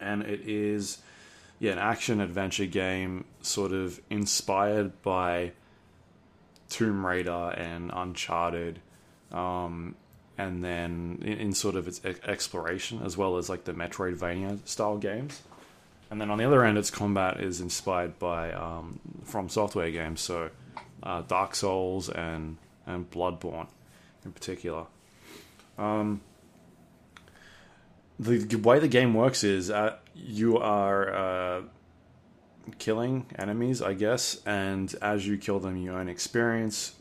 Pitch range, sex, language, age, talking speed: 90-105 Hz, male, English, 20-39, 125 wpm